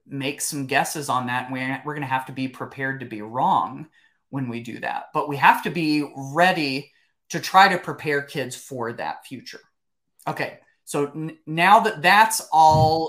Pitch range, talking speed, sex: 135-170 Hz, 180 wpm, male